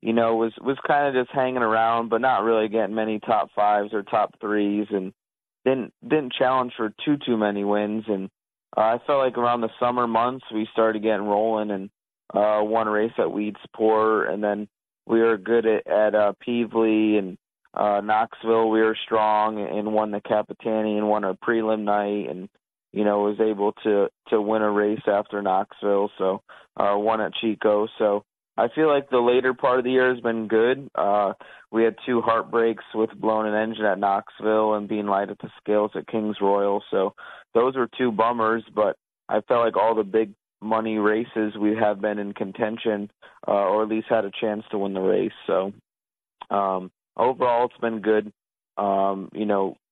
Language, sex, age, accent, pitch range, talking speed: English, male, 30-49, American, 105-115 Hz, 195 wpm